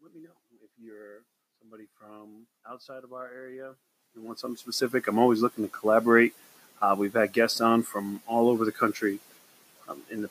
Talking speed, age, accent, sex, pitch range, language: 190 wpm, 30-49, American, male, 105-125 Hz, English